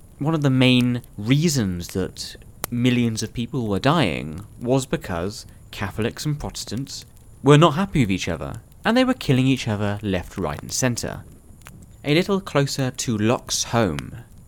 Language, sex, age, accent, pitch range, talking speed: English, male, 30-49, British, 100-140 Hz, 160 wpm